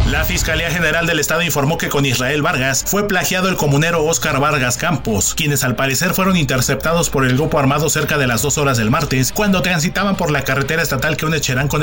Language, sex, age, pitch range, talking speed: Spanish, male, 40-59, 130-170 Hz, 220 wpm